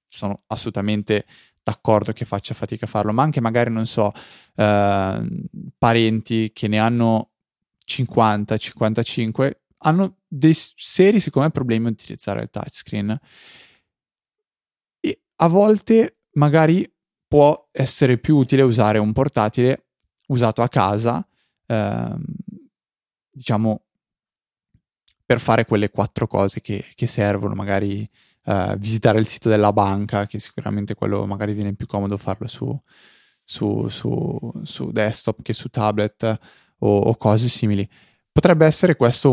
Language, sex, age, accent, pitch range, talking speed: Italian, male, 20-39, native, 105-135 Hz, 120 wpm